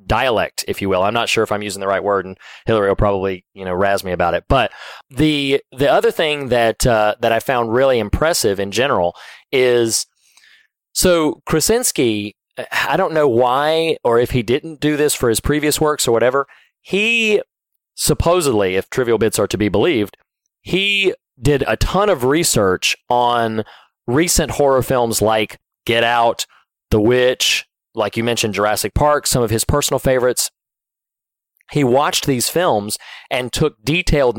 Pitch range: 105-140 Hz